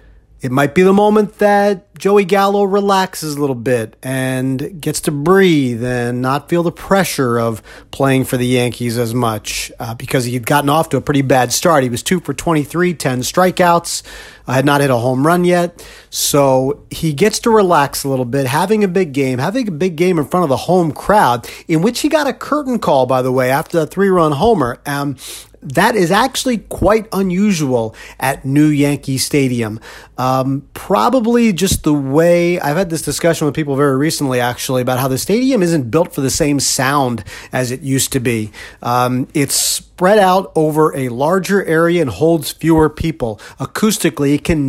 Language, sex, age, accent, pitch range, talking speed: English, male, 40-59, American, 130-180 Hz, 195 wpm